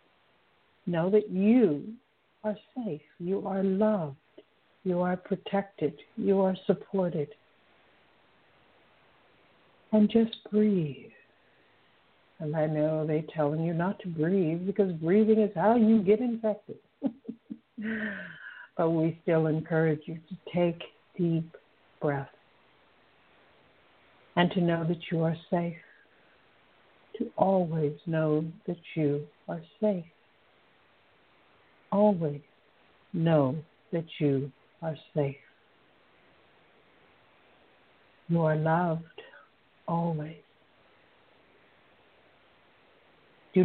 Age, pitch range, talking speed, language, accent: 60-79, 160-205 Hz, 90 wpm, English, American